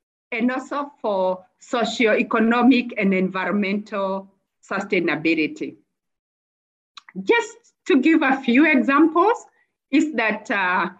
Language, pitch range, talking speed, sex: English, 205-290 Hz, 85 wpm, female